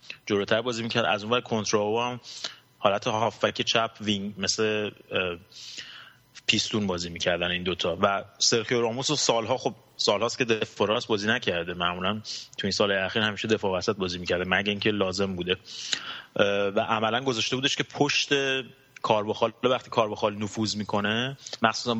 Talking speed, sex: 155 wpm, male